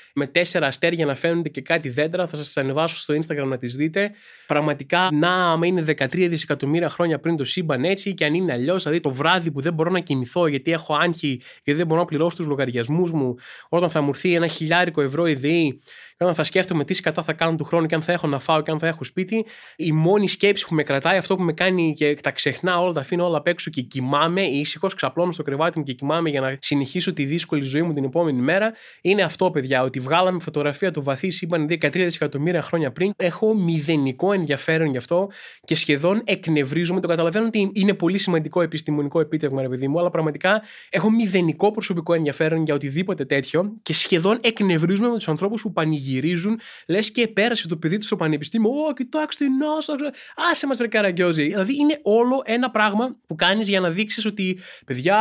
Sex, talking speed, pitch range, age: male, 205 wpm, 150-195 Hz, 20-39